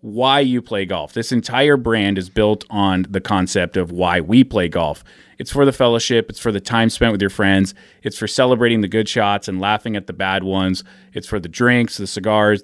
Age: 30-49